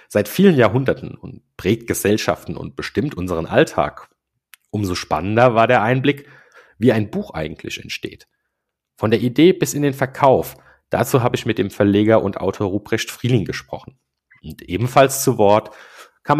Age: 40-59